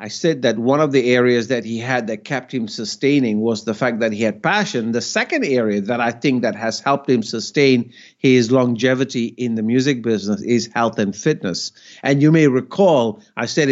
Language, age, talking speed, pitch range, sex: English, 50-69, 210 wpm, 115-150 Hz, male